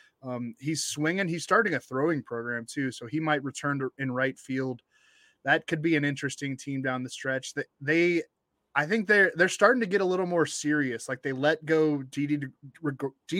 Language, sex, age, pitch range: English, male, 20-39, 130-155 Hz